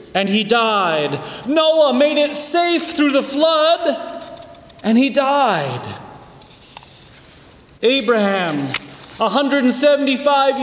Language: English